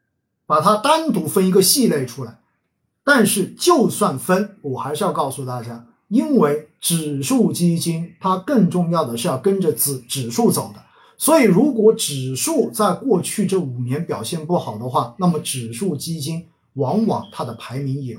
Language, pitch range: Chinese, 140-210 Hz